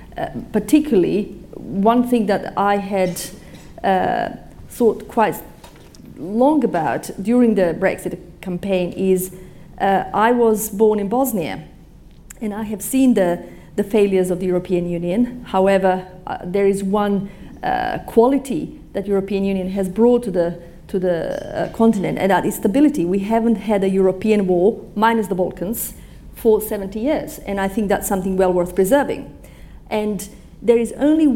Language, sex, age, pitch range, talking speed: English, female, 40-59, 190-245 Hz, 150 wpm